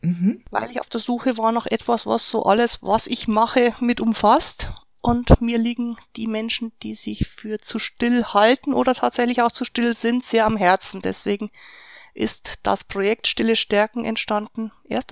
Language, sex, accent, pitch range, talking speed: German, female, German, 215-245 Hz, 175 wpm